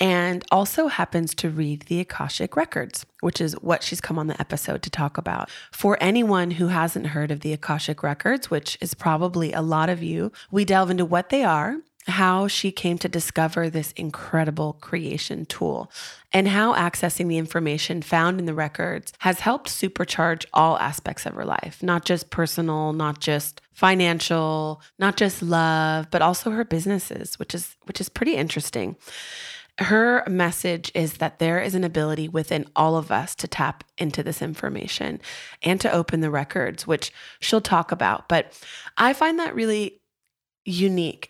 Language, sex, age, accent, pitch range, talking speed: English, female, 20-39, American, 160-195 Hz, 170 wpm